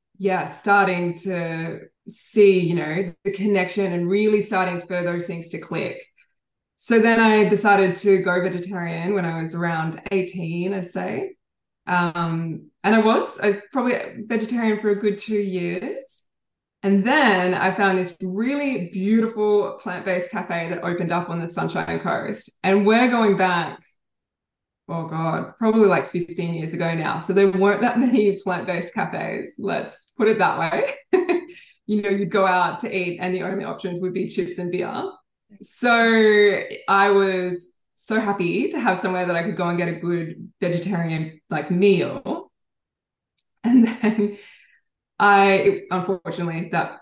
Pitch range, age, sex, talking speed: 180-210 Hz, 20-39, female, 155 wpm